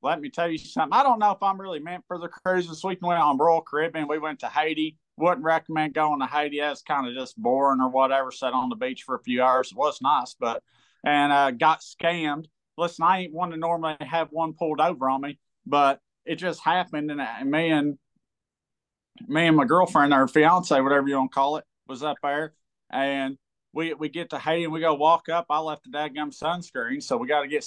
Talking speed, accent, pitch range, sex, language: 240 wpm, American, 150-180 Hz, male, English